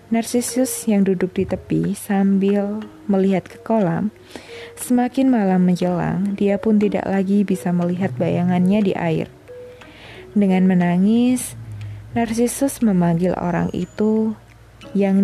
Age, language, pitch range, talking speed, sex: 20-39, Indonesian, 130-220 Hz, 110 wpm, female